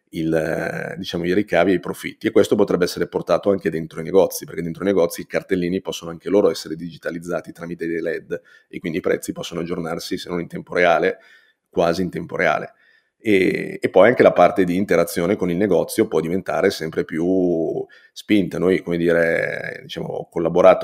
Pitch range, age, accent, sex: 85-100 Hz, 30-49, native, male